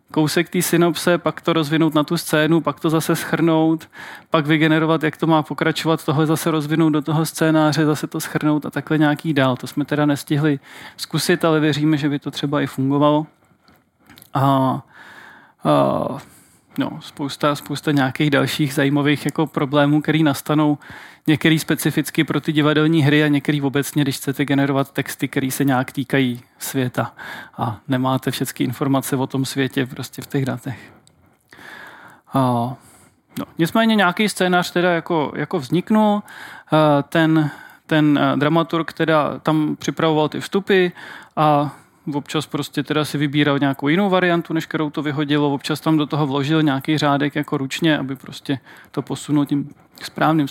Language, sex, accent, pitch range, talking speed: Czech, male, native, 140-160 Hz, 155 wpm